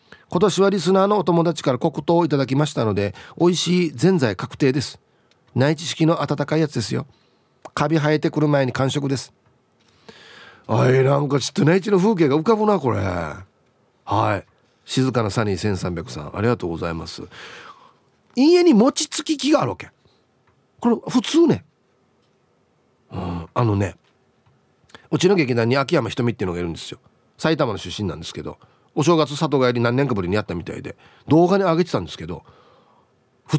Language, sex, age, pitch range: Japanese, male, 40-59, 120-190 Hz